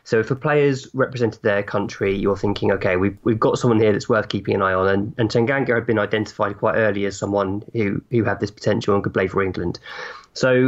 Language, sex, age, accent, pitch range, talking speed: English, male, 20-39, British, 100-120 Hz, 235 wpm